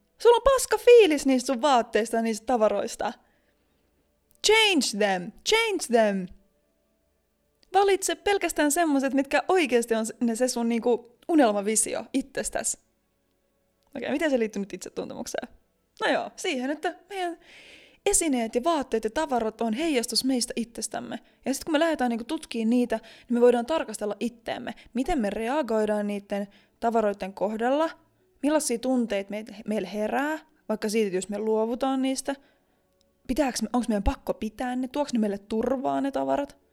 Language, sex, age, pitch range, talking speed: Finnish, female, 20-39, 215-290 Hz, 140 wpm